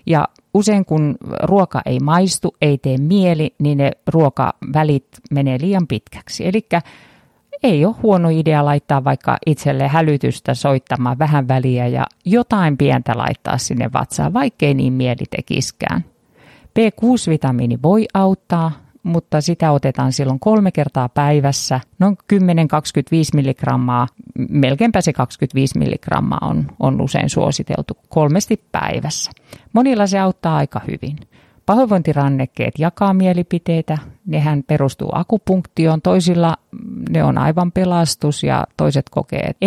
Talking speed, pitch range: 120 wpm, 140-185 Hz